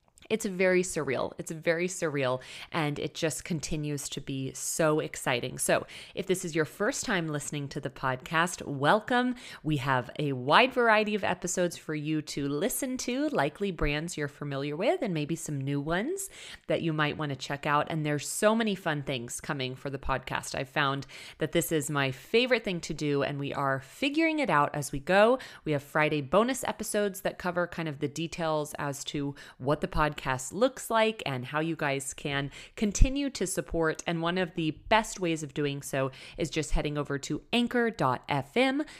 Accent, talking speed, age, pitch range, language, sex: American, 190 wpm, 30-49, 145-190 Hz, English, female